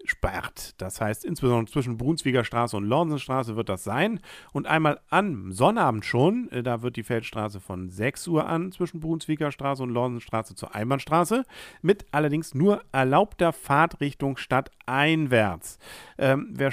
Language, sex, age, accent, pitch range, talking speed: German, male, 50-69, German, 110-155 Hz, 140 wpm